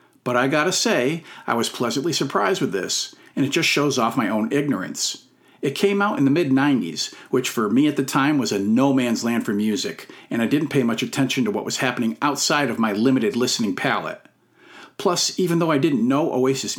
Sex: male